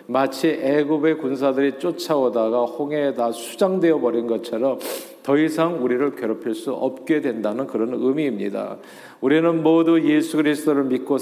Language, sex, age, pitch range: Korean, male, 40-59, 115-155 Hz